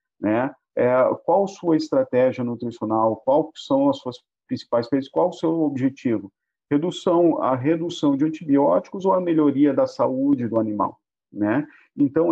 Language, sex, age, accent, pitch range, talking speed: Portuguese, male, 50-69, Brazilian, 120-190 Hz, 145 wpm